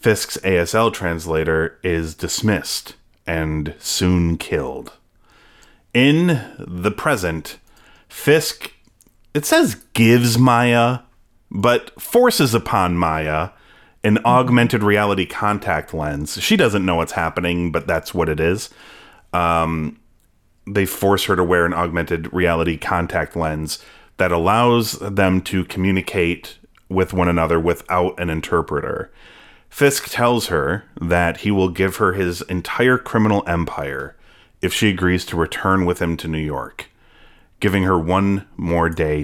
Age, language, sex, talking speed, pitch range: 30-49, English, male, 130 wpm, 85-105 Hz